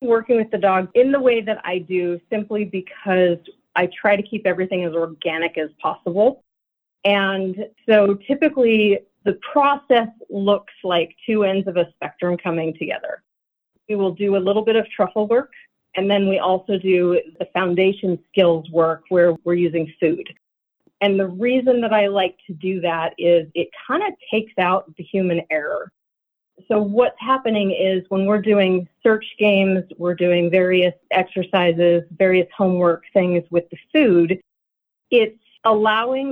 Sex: female